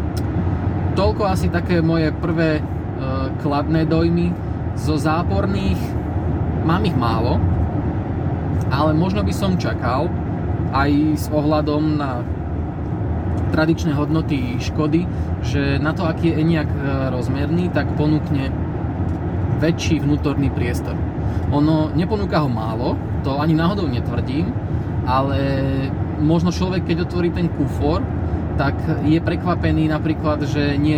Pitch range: 90-150 Hz